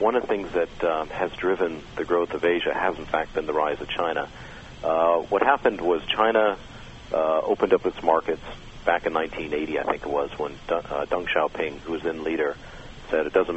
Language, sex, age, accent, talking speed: English, male, 50-69, American, 215 wpm